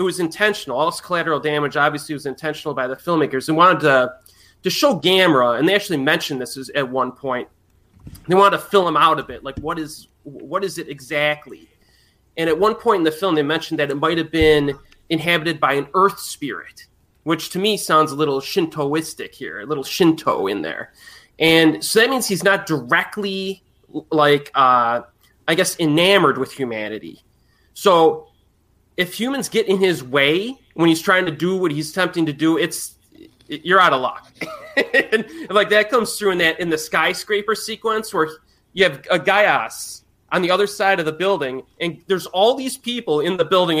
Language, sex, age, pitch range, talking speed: English, male, 20-39, 150-200 Hz, 195 wpm